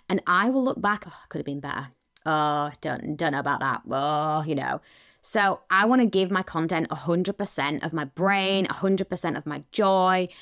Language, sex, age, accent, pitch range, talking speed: English, female, 20-39, British, 170-235 Hz, 195 wpm